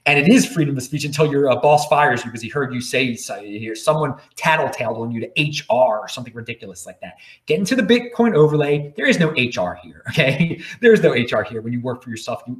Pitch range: 120-185 Hz